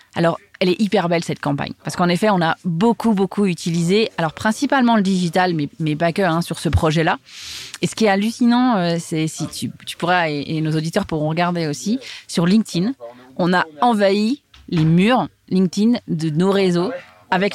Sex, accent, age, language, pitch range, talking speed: female, French, 20-39, French, 165-215 Hz, 190 wpm